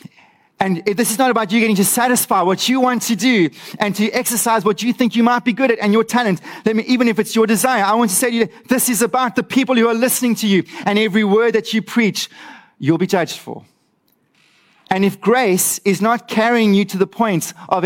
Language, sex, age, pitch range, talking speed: English, male, 30-49, 160-225 Hz, 240 wpm